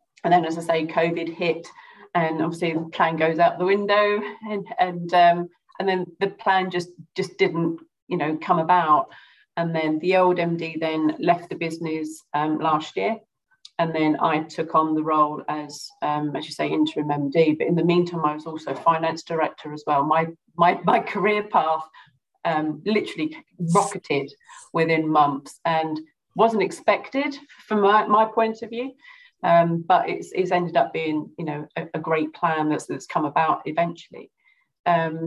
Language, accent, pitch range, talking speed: English, British, 160-195 Hz, 175 wpm